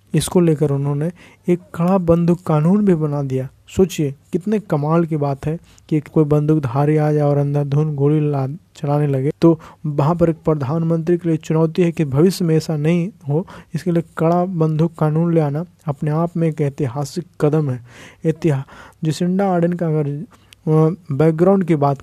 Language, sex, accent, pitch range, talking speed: Hindi, male, native, 150-170 Hz, 170 wpm